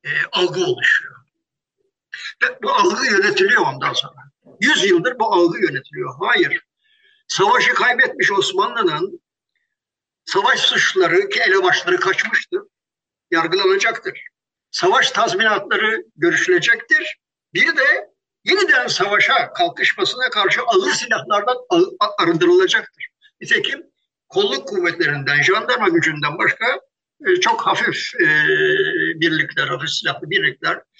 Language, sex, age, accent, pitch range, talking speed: Turkish, male, 60-79, native, 320-420 Hz, 95 wpm